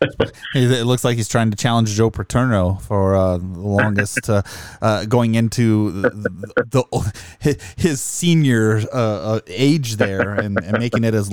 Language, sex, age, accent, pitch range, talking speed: English, male, 20-39, American, 105-125 Hz, 155 wpm